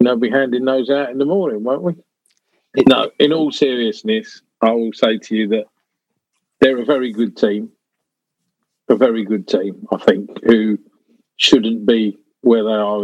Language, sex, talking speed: English, male, 175 wpm